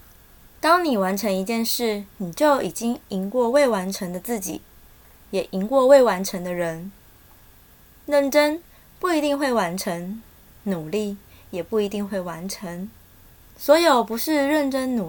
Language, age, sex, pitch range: Chinese, 20-39, female, 185-250 Hz